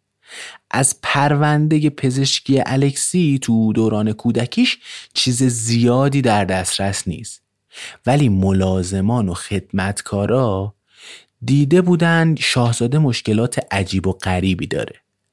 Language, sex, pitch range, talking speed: Persian, male, 95-130 Hz, 95 wpm